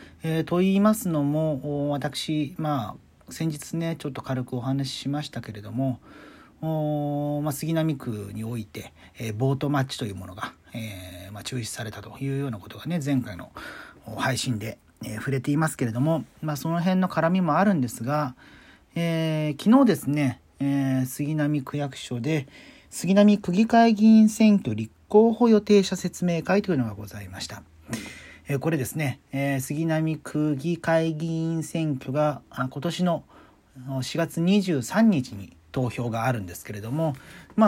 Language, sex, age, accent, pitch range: Japanese, male, 40-59, native, 125-165 Hz